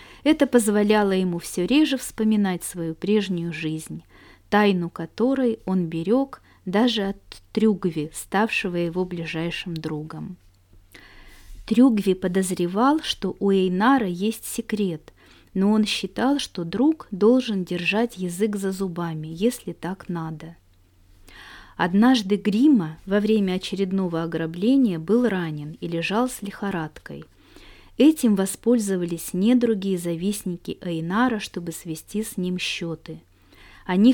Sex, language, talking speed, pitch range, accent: female, Russian, 110 wpm, 170-220 Hz, native